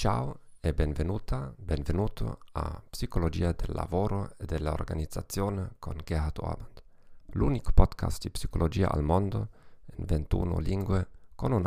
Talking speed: 125 wpm